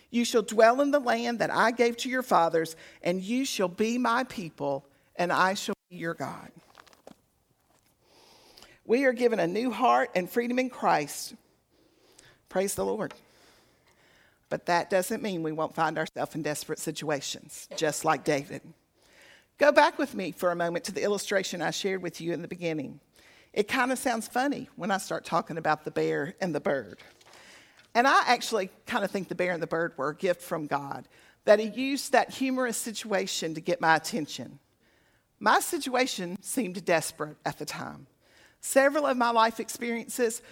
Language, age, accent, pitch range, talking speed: English, 50-69, American, 165-240 Hz, 180 wpm